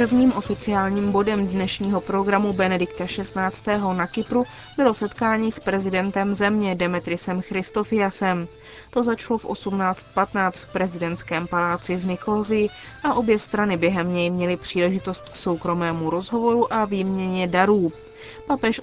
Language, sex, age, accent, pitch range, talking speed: Czech, female, 20-39, native, 175-210 Hz, 125 wpm